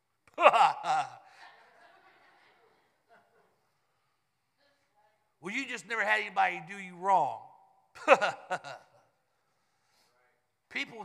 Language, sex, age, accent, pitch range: English, male, 50-69, American, 175-230 Hz